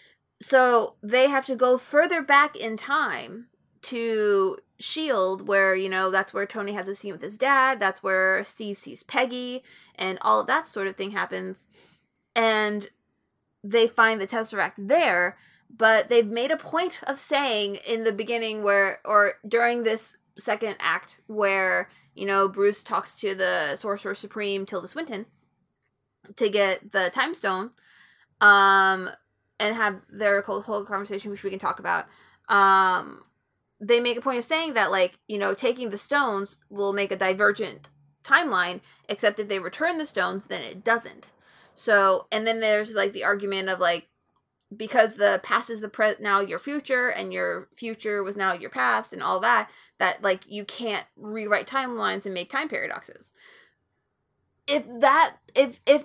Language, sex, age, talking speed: English, female, 20-39, 165 wpm